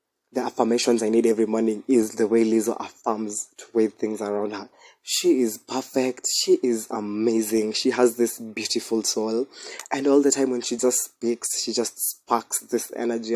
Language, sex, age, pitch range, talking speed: English, male, 20-39, 110-125 Hz, 180 wpm